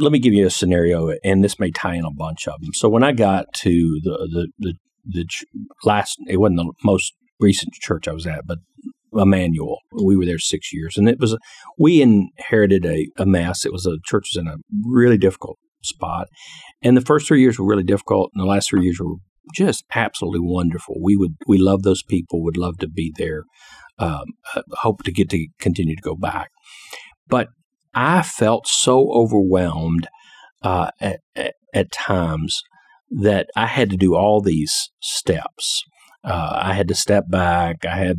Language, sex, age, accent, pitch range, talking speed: English, male, 50-69, American, 85-105 Hz, 190 wpm